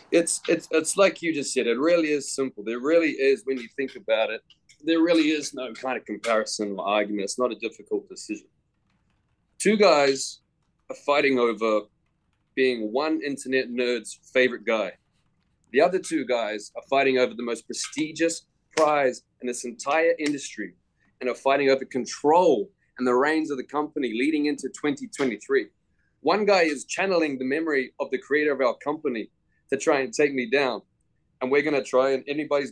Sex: male